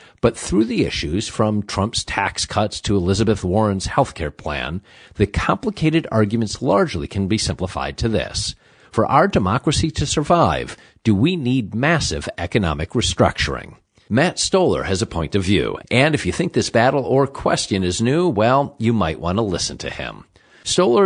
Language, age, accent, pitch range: English, 50-69, American, 95-125 Hz